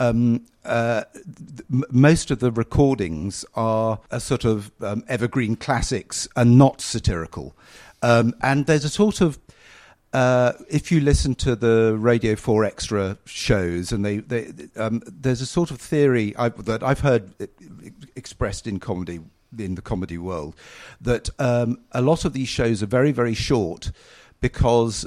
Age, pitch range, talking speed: 50-69, 110-135 Hz, 145 wpm